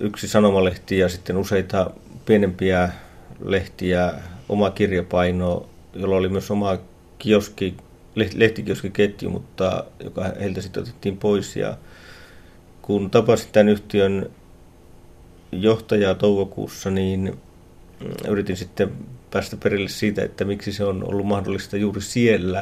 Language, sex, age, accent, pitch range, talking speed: Finnish, male, 30-49, native, 90-105 Hz, 105 wpm